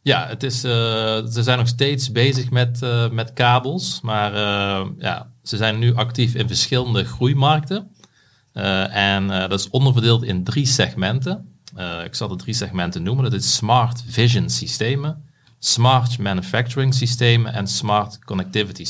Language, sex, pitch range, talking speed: Dutch, male, 95-120 Hz, 145 wpm